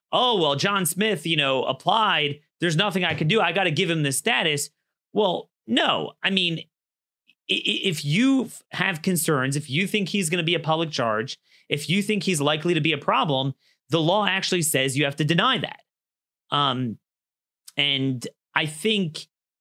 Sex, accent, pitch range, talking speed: male, American, 130-165 Hz, 180 wpm